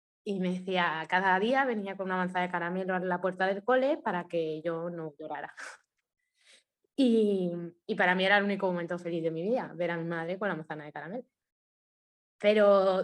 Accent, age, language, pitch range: Spanish, 20-39, Spanish, 180-220 Hz